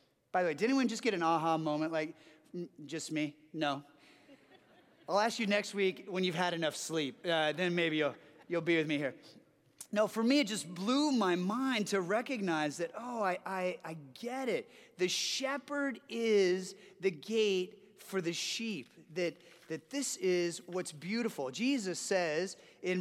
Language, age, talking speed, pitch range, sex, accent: English, 30-49, 175 wpm, 160-215 Hz, male, American